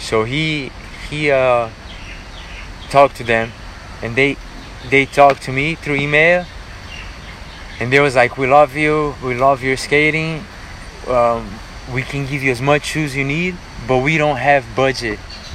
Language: Chinese